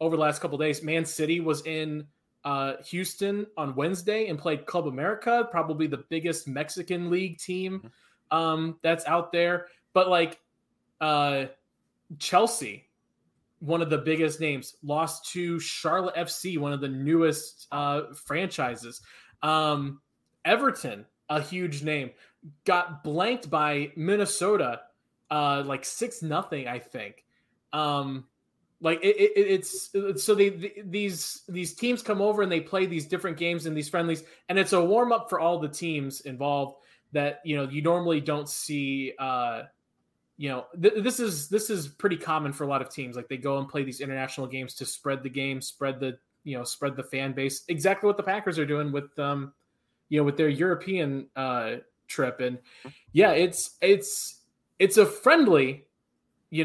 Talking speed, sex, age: 170 wpm, male, 20-39